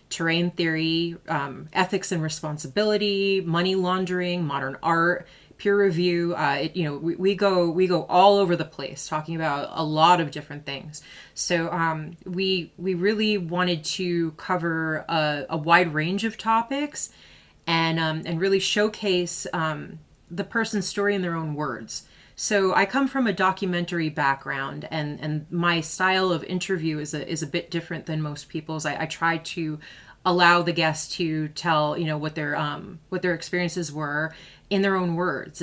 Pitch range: 155-185 Hz